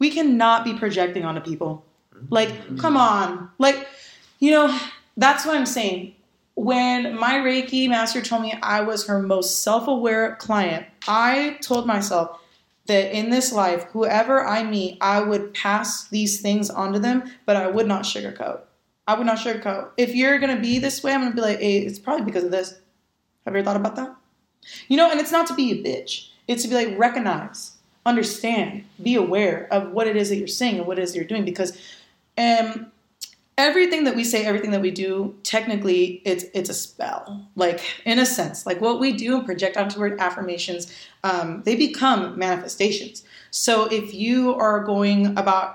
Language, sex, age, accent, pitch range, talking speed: English, female, 20-39, American, 190-245 Hz, 195 wpm